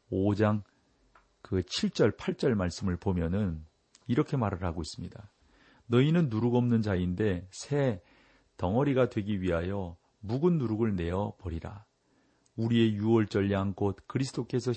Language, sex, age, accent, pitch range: Korean, male, 40-59, native, 95-125 Hz